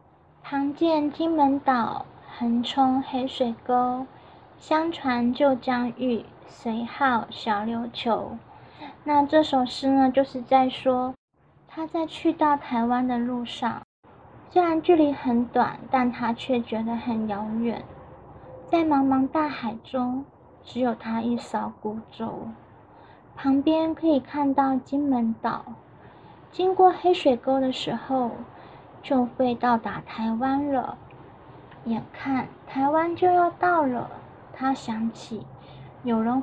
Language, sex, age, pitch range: Chinese, female, 20-39, 235-290 Hz